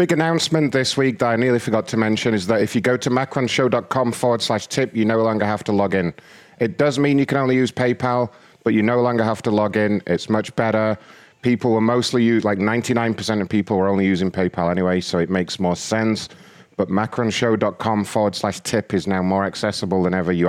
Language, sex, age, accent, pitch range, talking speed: English, male, 30-49, British, 100-120 Hz, 225 wpm